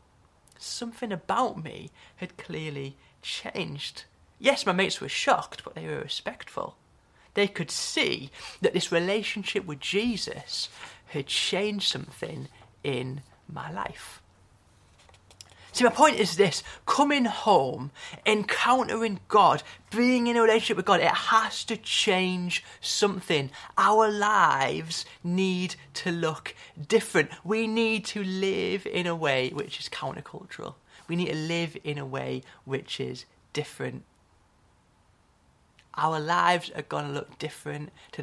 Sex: male